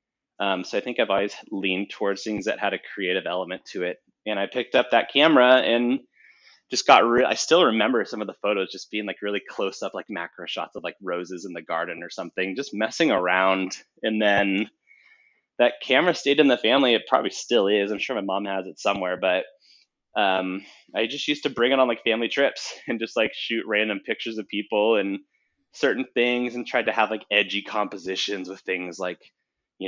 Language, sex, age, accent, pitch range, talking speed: English, male, 20-39, American, 95-120 Hz, 215 wpm